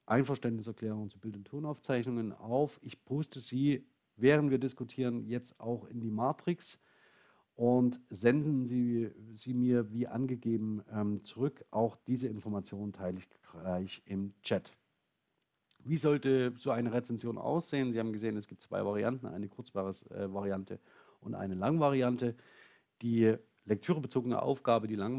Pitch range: 105-125 Hz